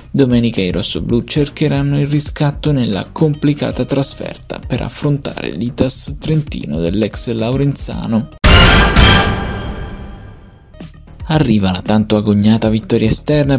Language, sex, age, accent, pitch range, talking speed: Italian, male, 20-39, native, 105-140 Hz, 95 wpm